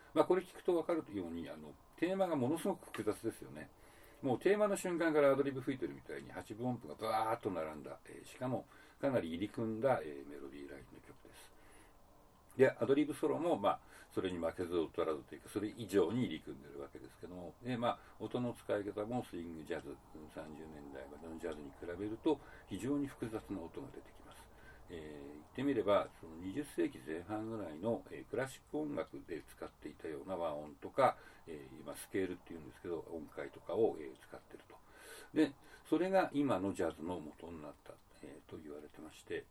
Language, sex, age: Japanese, male, 60-79